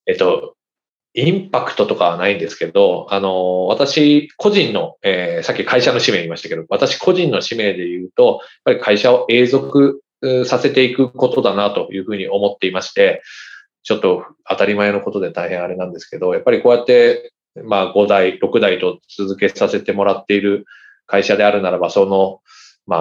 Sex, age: male, 20-39